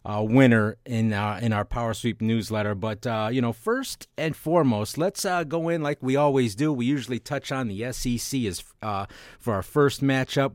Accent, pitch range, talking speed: American, 110-145 Hz, 210 wpm